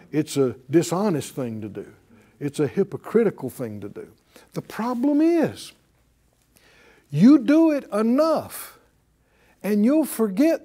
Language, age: English, 60-79